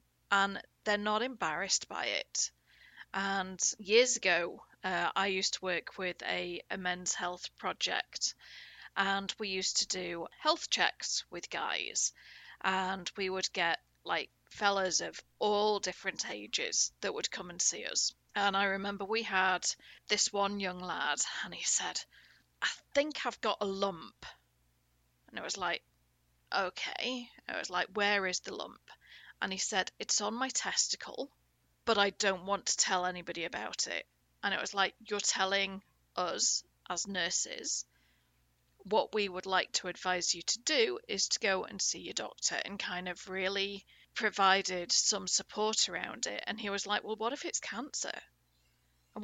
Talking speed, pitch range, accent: 165 wpm, 180-210 Hz, British